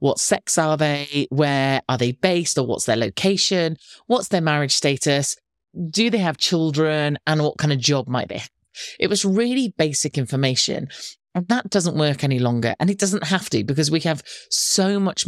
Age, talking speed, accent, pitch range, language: 30-49, 195 wpm, British, 135-185 Hz, English